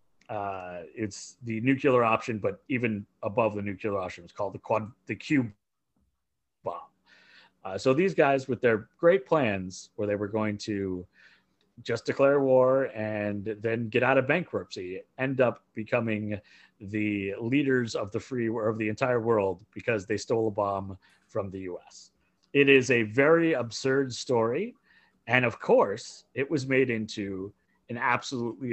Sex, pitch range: male, 105-135 Hz